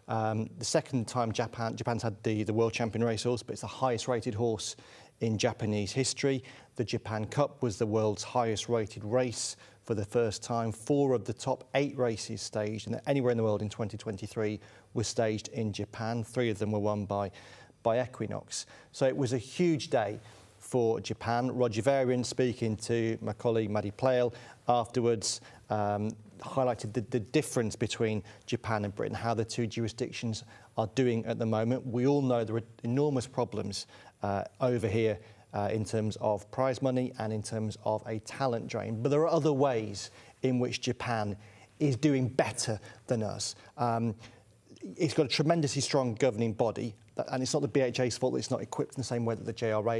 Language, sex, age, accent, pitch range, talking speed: English, male, 40-59, British, 110-125 Hz, 185 wpm